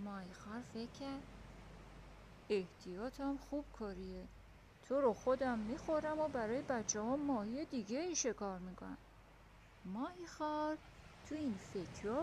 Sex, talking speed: female, 115 wpm